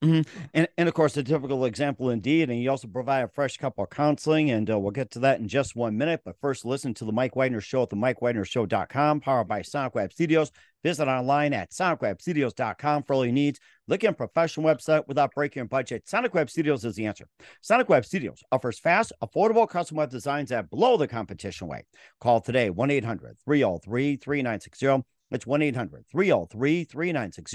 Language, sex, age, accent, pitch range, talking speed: English, male, 50-69, American, 120-155 Hz, 190 wpm